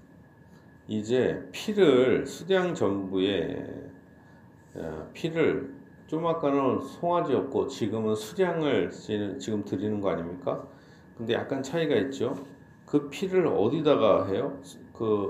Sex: male